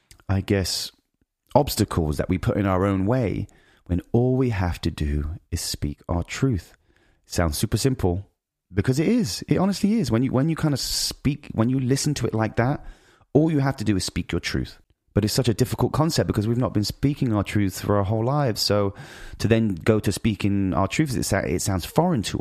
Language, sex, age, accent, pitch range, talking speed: English, male, 30-49, British, 95-130 Hz, 220 wpm